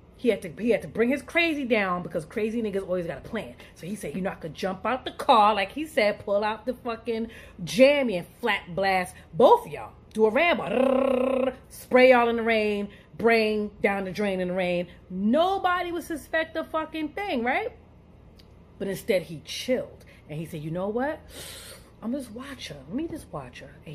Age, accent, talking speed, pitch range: 30-49, American, 210 wpm, 170-255 Hz